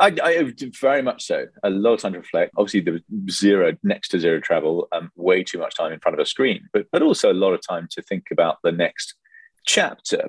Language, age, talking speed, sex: English, 30-49, 245 wpm, male